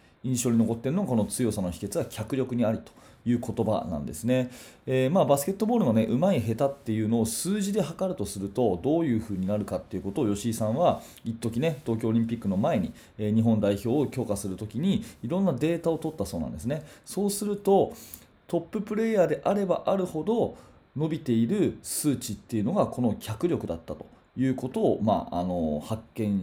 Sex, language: male, Japanese